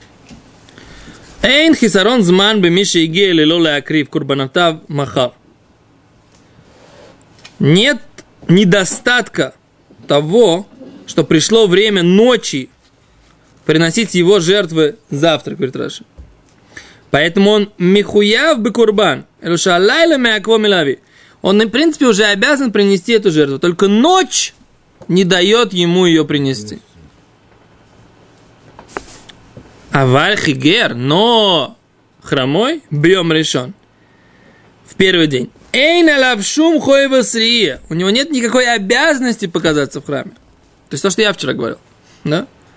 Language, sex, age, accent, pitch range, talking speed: Russian, male, 20-39, native, 165-235 Hz, 85 wpm